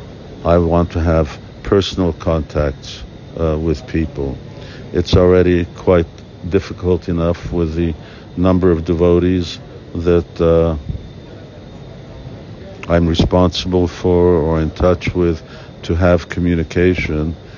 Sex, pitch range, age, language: male, 80-95 Hz, 60-79, English